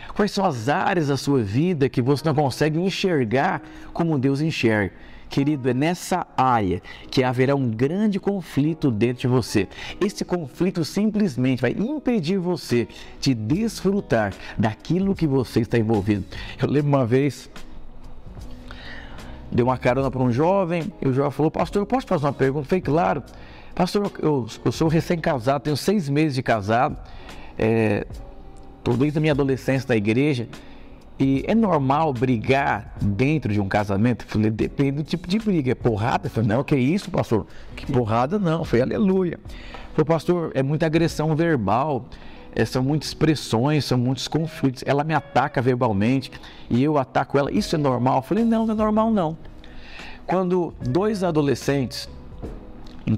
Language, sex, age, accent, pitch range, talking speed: Portuguese, male, 50-69, Brazilian, 120-165 Hz, 160 wpm